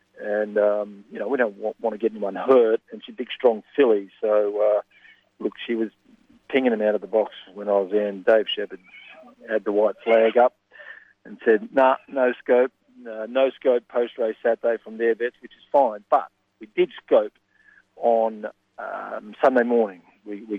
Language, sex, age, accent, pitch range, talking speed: English, male, 40-59, Australian, 110-135 Hz, 190 wpm